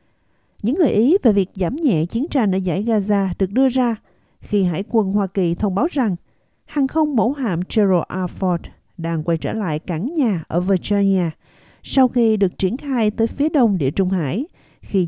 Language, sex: Vietnamese, female